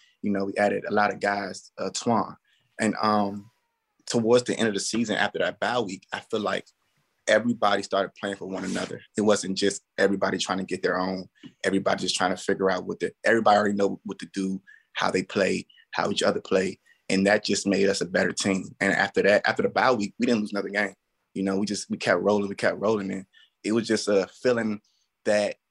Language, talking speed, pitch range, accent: English, 230 wpm, 100-115 Hz, American